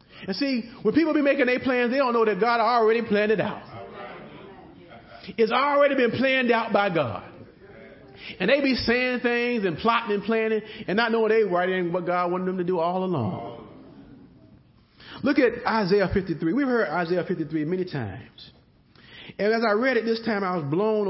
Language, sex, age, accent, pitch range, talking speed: English, male, 40-59, American, 180-240 Hz, 195 wpm